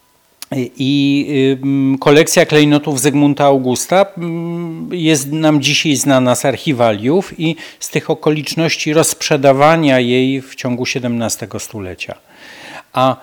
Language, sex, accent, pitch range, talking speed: Polish, male, native, 120-155 Hz, 100 wpm